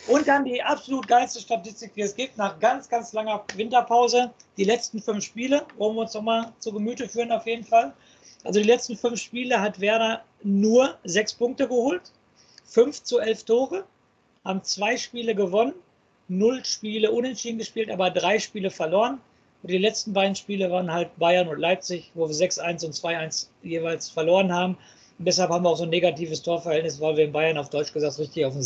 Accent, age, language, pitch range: German, 50-69, German, 175-230 Hz